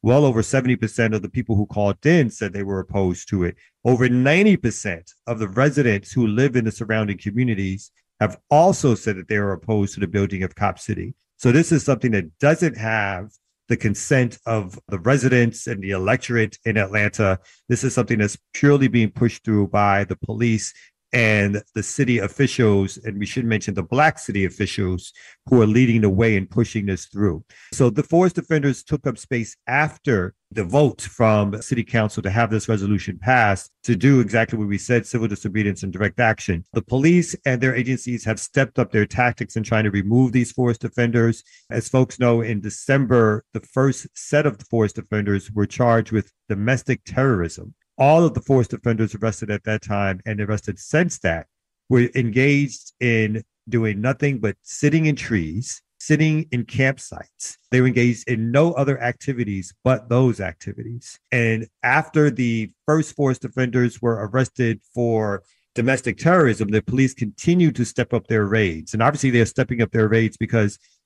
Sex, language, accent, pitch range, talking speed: male, English, American, 105-130 Hz, 180 wpm